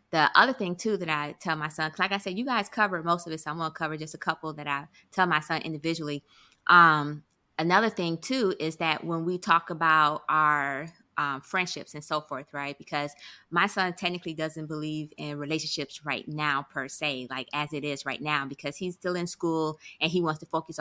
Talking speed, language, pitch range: 220 wpm, English, 150-170 Hz